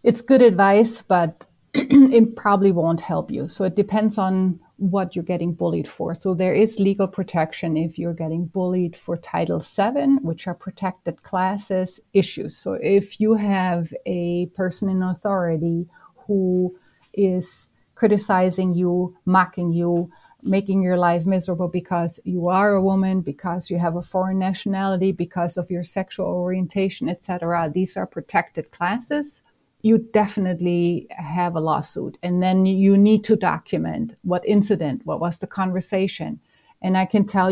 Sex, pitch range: female, 175-195 Hz